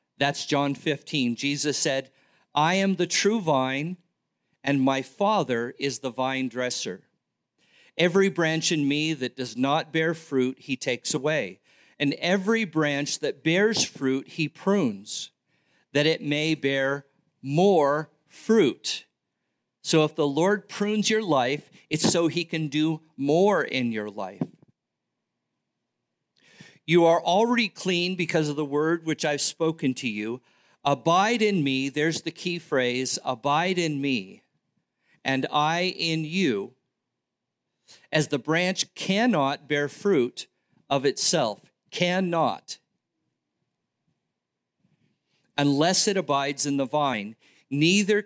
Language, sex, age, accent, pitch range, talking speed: English, male, 50-69, American, 135-175 Hz, 125 wpm